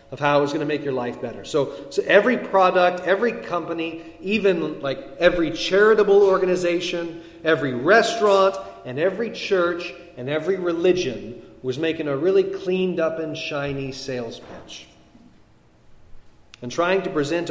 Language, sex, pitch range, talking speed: English, male, 140-185 Hz, 145 wpm